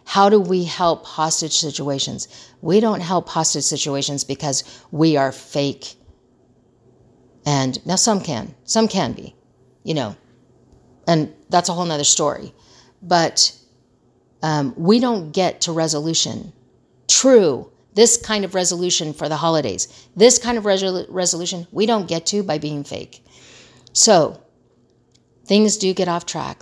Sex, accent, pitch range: female, American, 150-195 Hz